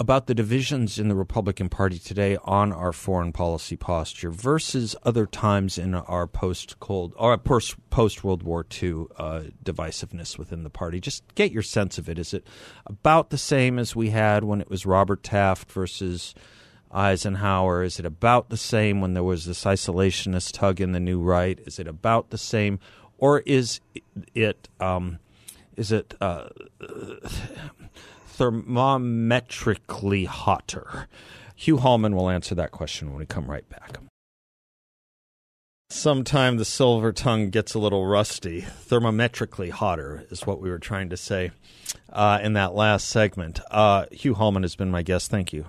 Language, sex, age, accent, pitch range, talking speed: English, male, 50-69, American, 90-110 Hz, 160 wpm